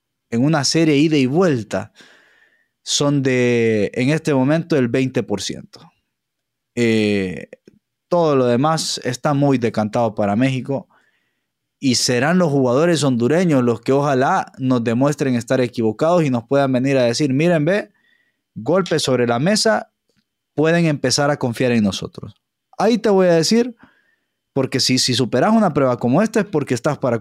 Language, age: English, 20-39